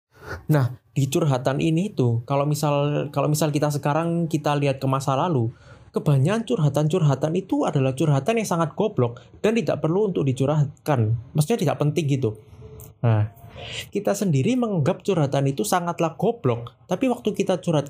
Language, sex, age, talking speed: Indonesian, male, 20-39, 150 wpm